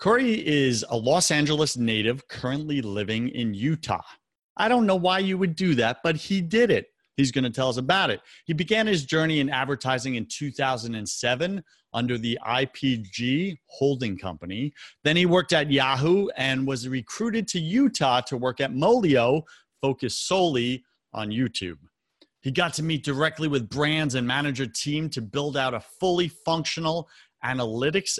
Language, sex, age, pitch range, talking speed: English, male, 30-49, 120-170 Hz, 165 wpm